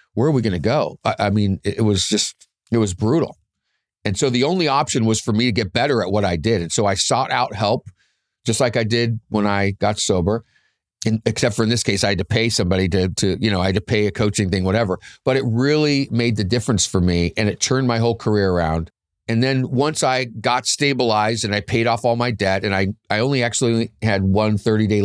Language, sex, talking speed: English, male, 250 wpm